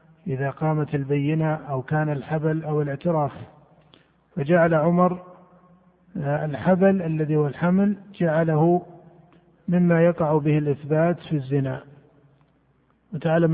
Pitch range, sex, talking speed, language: 145-175 Hz, male, 95 wpm, Arabic